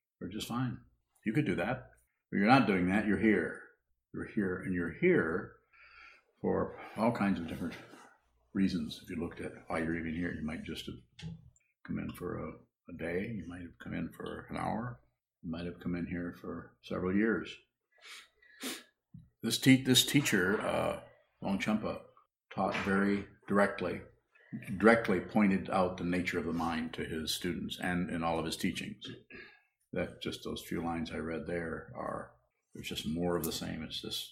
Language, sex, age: English, male, 50-69